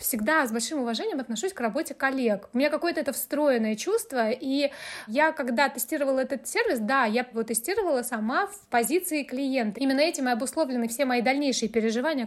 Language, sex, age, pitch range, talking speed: Russian, female, 20-39, 225-285 Hz, 175 wpm